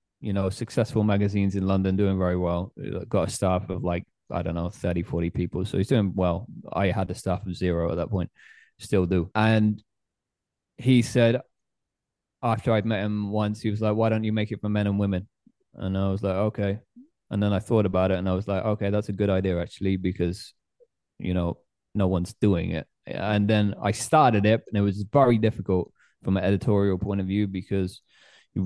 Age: 20-39